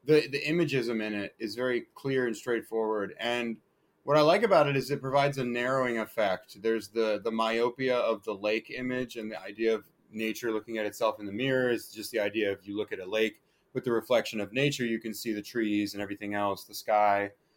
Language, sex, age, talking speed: English, male, 30-49, 225 wpm